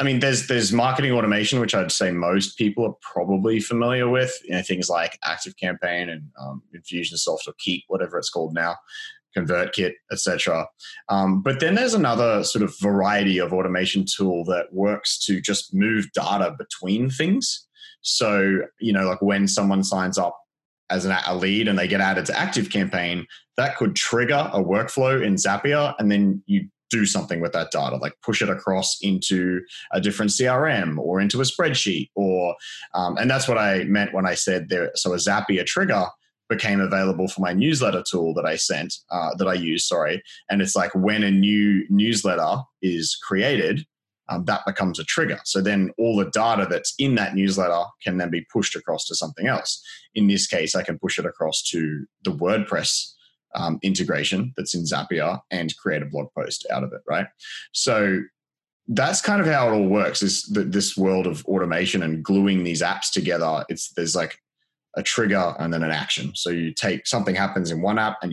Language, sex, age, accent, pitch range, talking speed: English, male, 20-39, Australian, 90-110 Hz, 190 wpm